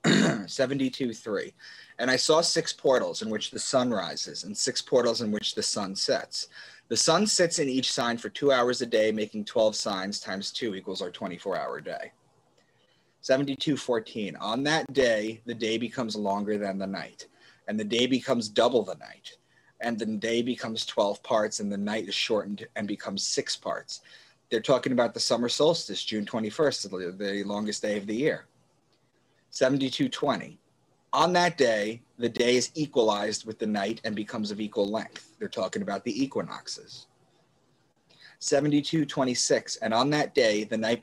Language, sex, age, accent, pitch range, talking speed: English, male, 30-49, American, 105-135 Hz, 165 wpm